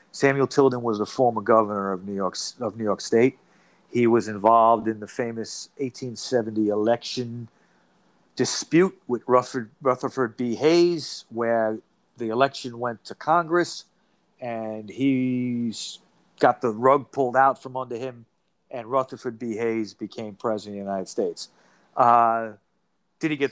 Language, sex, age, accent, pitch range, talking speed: English, male, 40-59, American, 110-130 Hz, 145 wpm